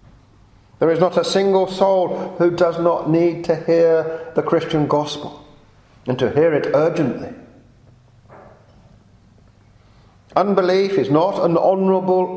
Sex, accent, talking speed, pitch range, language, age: male, British, 120 wpm, 115-190 Hz, English, 50-69